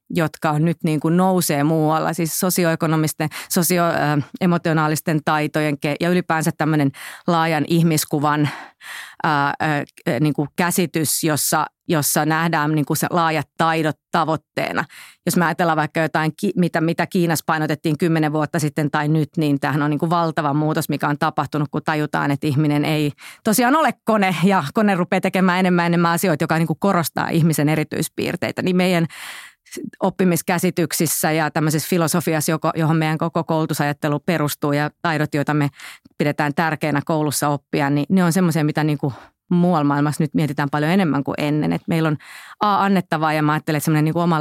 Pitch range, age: 150-170 Hz, 30-49